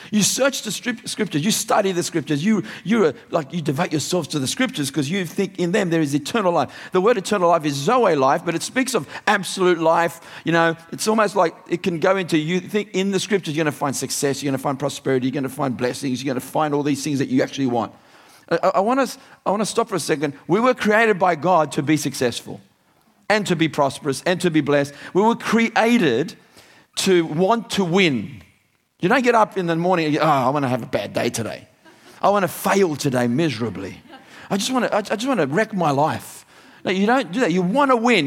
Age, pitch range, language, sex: 50-69, 155-210 Hz, English, male